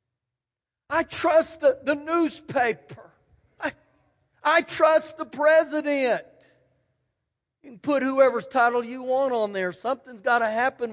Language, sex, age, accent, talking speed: English, male, 40-59, American, 125 wpm